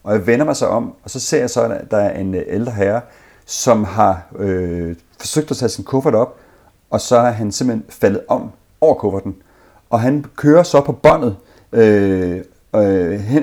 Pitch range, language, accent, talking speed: 105-145 Hz, Danish, native, 190 wpm